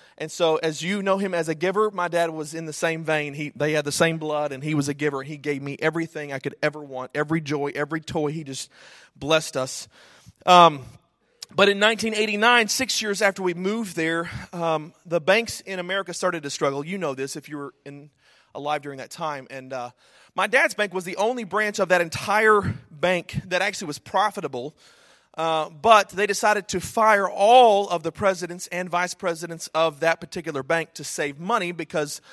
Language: English